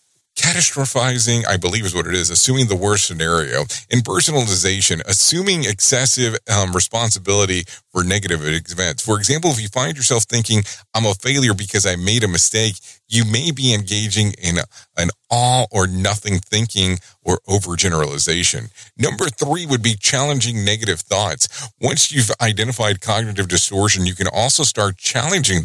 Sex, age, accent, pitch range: male, 40-59, American, 95-120 Hz